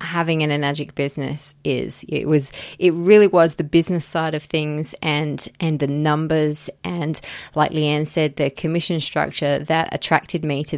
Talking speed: 165 wpm